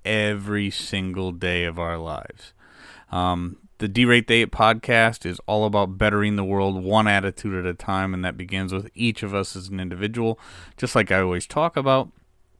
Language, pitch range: English, 90-110 Hz